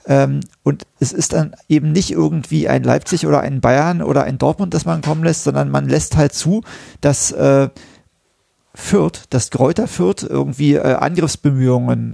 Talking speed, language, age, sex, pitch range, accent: 165 wpm, German, 40-59, male, 130-160 Hz, German